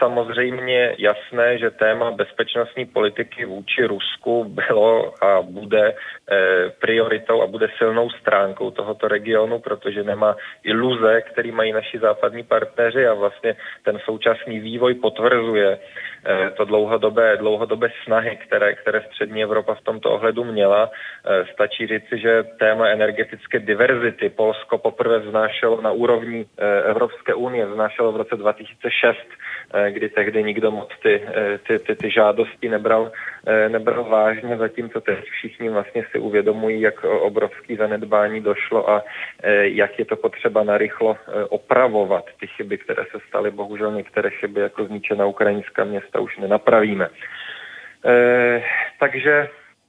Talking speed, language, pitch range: 125 wpm, Czech, 110-125 Hz